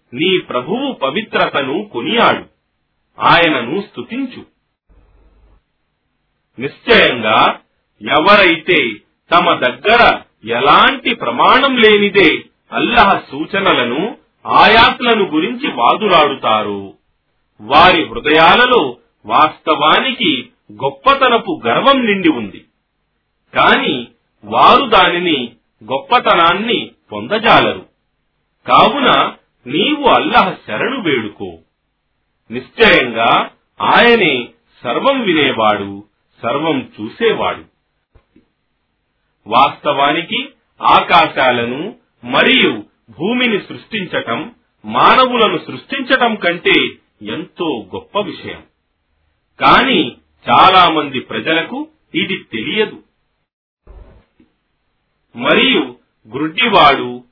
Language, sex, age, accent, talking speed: Telugu, male, 40-59, native, 55 wpm